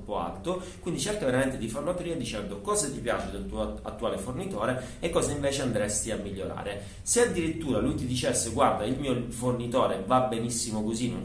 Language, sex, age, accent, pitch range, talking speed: Italian, male, 30-49, native, 105-130 Hz, 185 wpm